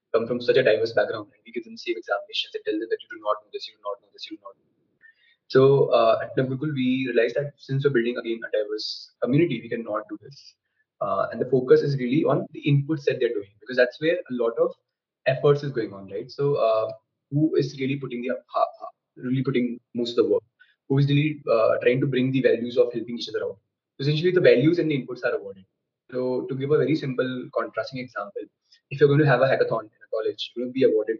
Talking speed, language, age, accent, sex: 245 wpm, Hindi, 20-39, native, male